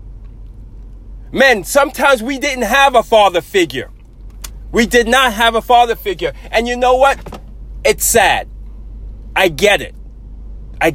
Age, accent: 30-49, American